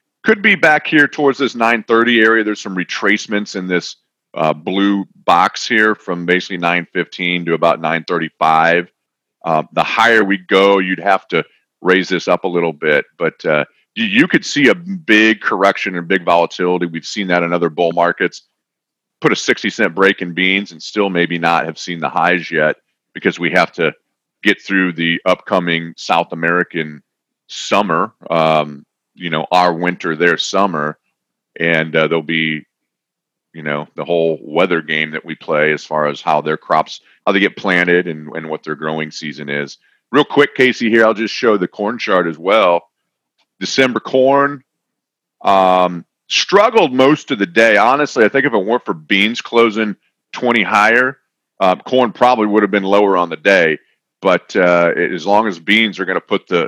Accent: American